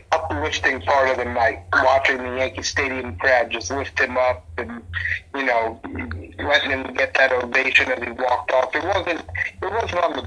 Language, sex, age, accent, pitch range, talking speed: English, male, 50-69, American, 90-130 Hz, 185 wpm